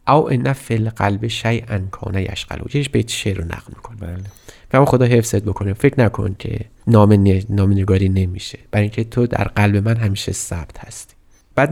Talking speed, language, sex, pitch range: 180 wpm, Persian, male, 100-135 Hz